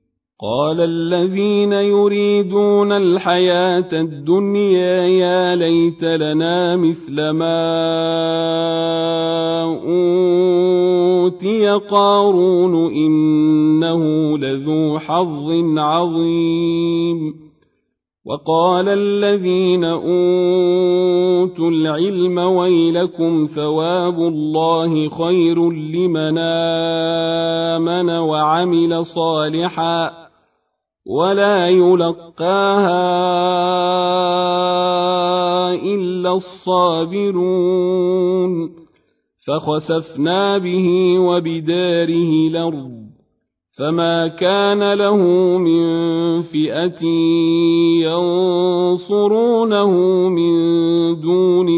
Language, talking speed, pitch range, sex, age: Arabic, 50 wpm, 165-180 Hz, male, 40-59